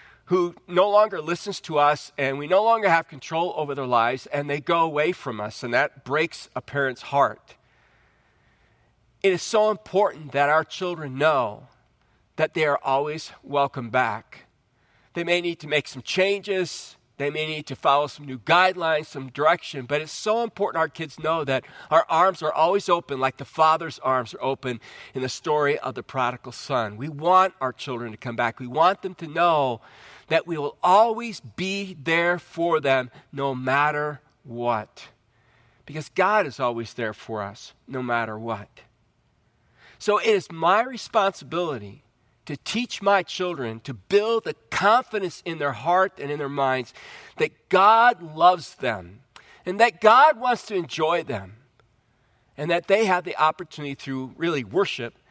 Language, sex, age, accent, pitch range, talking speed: English, male, 40-59, American, 130-180 Hz, 170 wpm